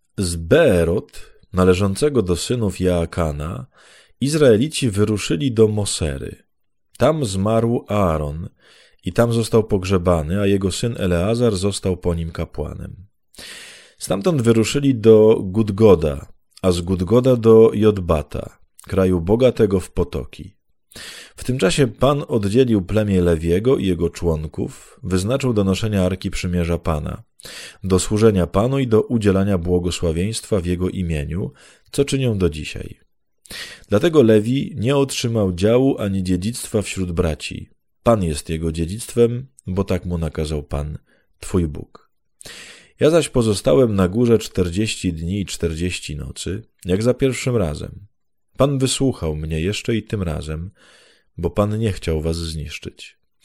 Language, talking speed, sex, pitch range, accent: Polish, 130 wpm, male, 90-115 Hz, native